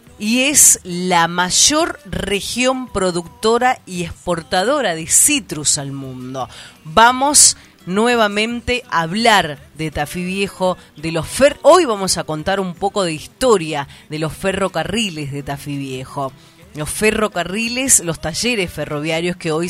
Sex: female